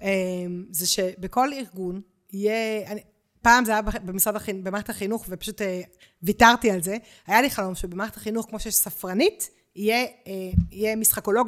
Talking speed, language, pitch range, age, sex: 120 wpm, Hebrew, 195-255 Hz, 30-49, female